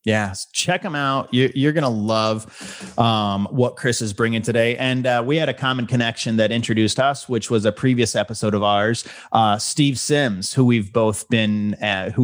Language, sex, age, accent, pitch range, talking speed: English, male, 30-49, American, 110-130 Hz, 195 wpm